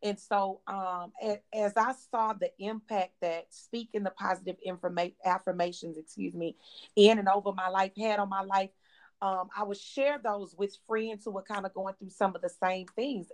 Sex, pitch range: female, 170-200 Hz